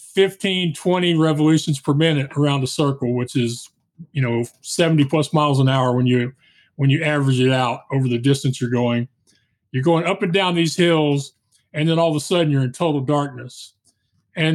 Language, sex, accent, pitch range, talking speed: English, male, American, 135-165 Hz, 195 wpm